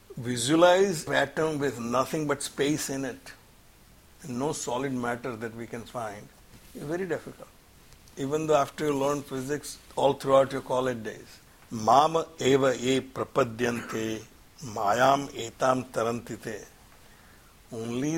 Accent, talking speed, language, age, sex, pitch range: Indian, 115 wpm, English, 60-79, male, 115-140 Hz